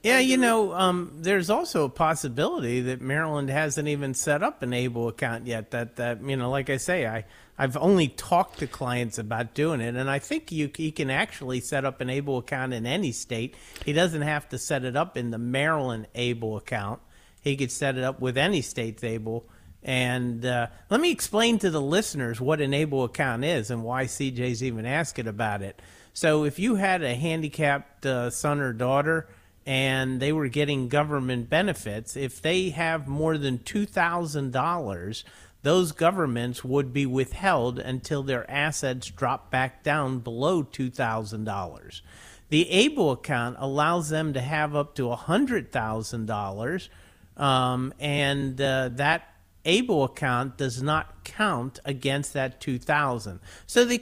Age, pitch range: 50-69, 120-155 Hz